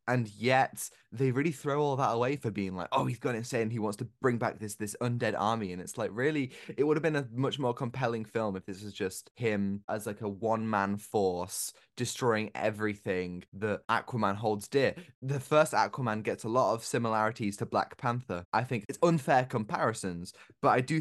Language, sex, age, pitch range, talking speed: English, male, 10-29, 100-130 Hz, 210 wpm